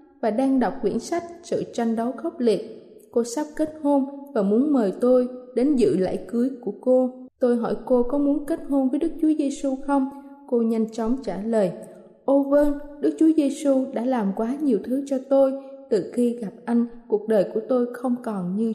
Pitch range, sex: 225-280 Hz, female